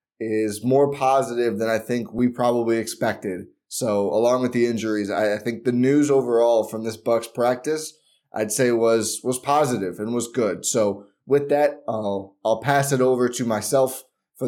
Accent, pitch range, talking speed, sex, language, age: American, 115-145 Hz, 180 wpm, male, English, 20-39